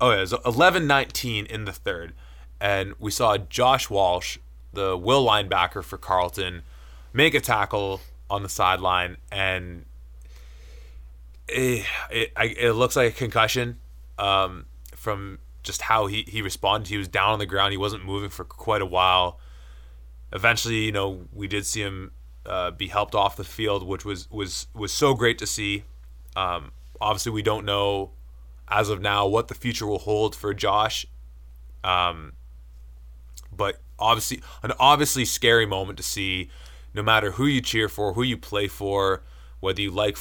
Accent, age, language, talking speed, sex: American, 20-39, English, 165 wpm, male